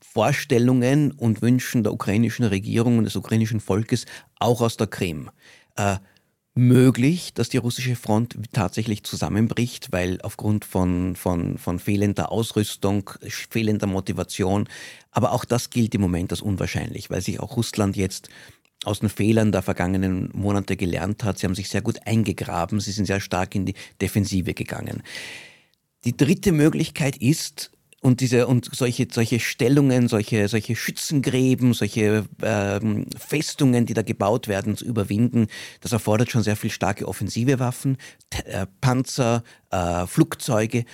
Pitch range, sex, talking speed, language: 100-125 Hz, male, 145 wpm, German